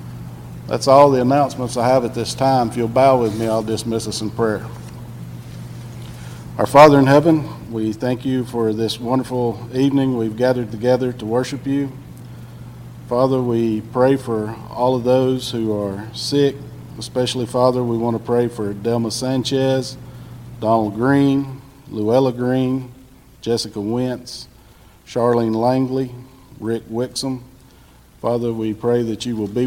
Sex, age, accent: male, 50-69, American